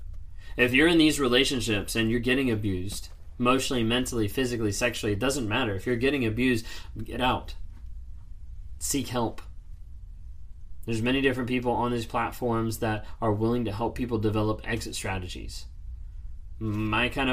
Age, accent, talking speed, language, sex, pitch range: 20-39, American, 145 wpm, English, male, 90-120 Hz